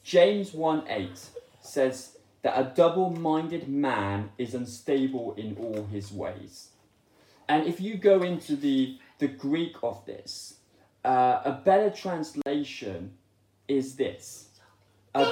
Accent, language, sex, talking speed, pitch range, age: British, English, male, 120 wpm, 110-165 Hz, 20-39